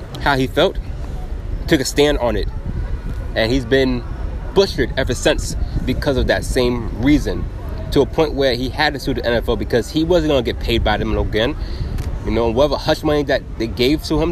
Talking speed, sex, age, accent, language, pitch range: 200 wpm, male, 20-39, American, English, 100-135 Hz